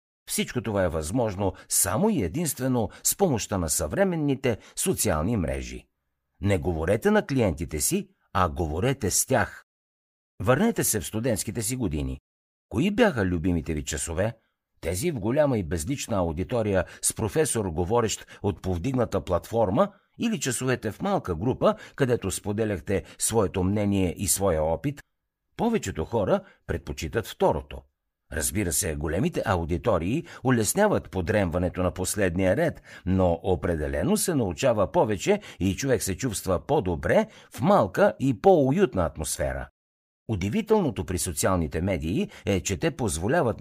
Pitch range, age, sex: 90-130 Hz, 60-79, male